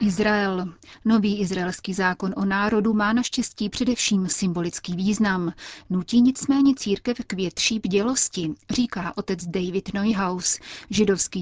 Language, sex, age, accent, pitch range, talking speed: Czech, female, 30-49, native, 185-210 Hz, 115 wpm